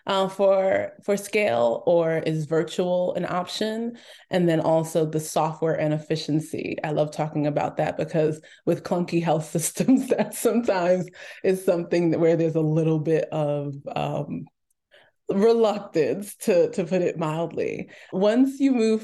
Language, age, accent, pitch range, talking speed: English, 20-39, American, 160-185 Hz, 150 wpm